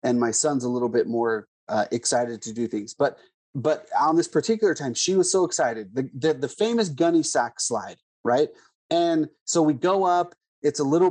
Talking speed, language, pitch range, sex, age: 205 wpm, English, 135-180 Hz, male, 30-49